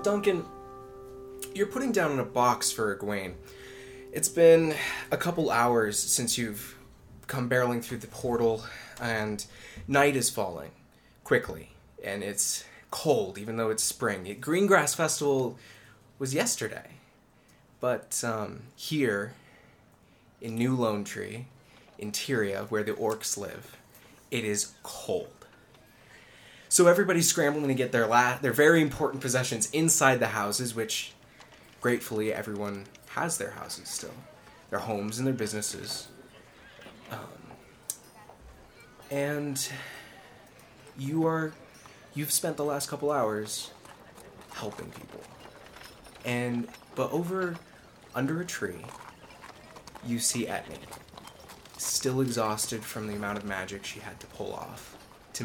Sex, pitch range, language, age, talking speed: male, 110-145 Hz, English, 20-39, 120 wpm